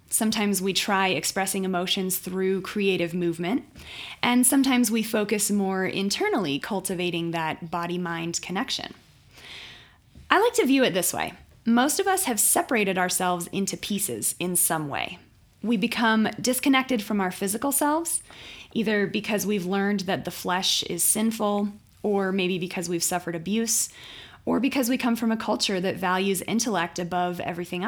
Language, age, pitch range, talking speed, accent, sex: English, 20-39, 185-230 Hz, 150 wpm, American, female